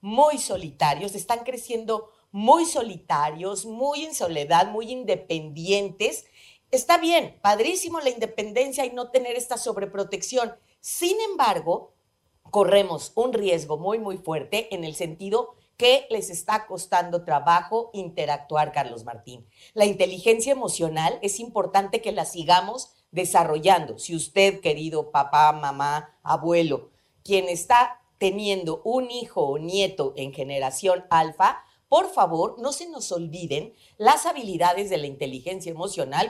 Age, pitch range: 40-59, 165-245 Hz